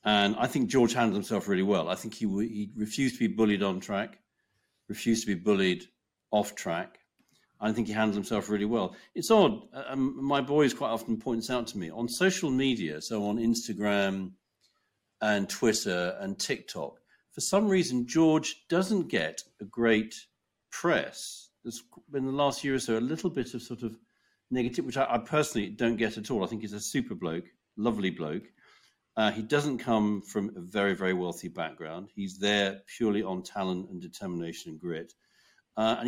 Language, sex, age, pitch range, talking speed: English, male, 50-69, 105-125 Hz, 190 wpm